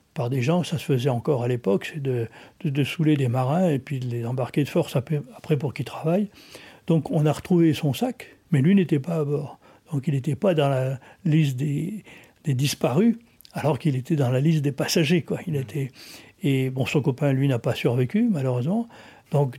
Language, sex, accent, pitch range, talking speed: French, male, French, 130-165 Hz, 215 wpm